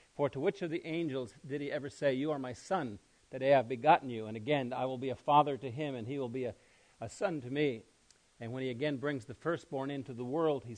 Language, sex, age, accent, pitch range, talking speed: English, male, 50-69, American, 125-150 Hz, 265 wpm